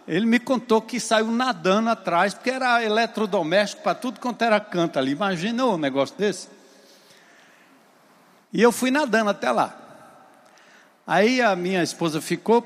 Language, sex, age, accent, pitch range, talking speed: Portuguese, male, 60-79, Brazilian, 175-230 Hz, 150 wpm